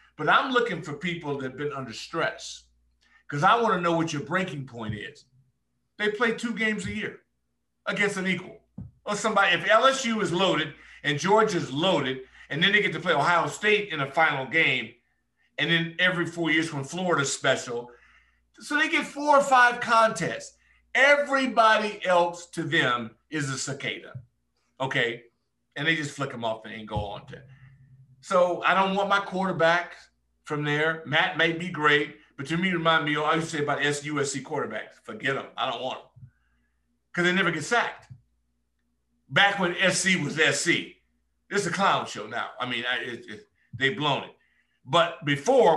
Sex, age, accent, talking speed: male, 50-69, American, 180 wpm